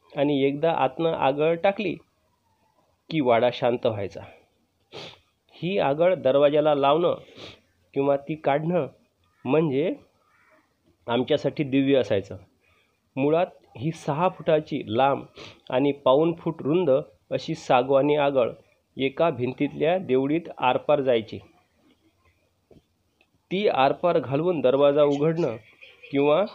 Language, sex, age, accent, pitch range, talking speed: Marathi, male, 30-49, native, 130-165 Hz, 95 wpm